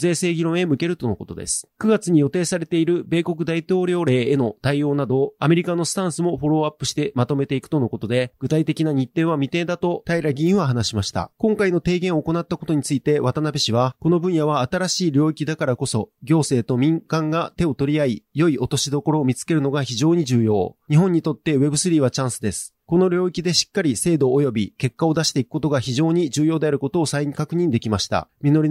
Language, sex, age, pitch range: Japanese, male, 30-49, 135-170 Hz